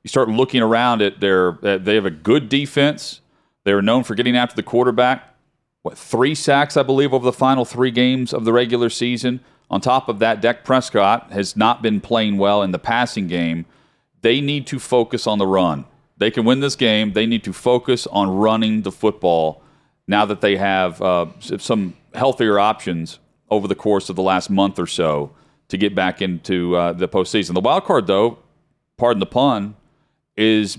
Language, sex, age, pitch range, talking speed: English, male, 40-59, 95-125 Hz, 195 wpm